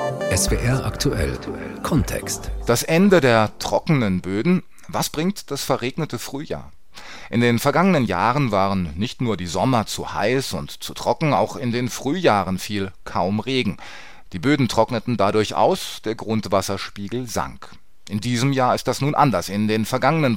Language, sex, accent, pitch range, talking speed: German, male, German, 95-130 Hz, 155 wpm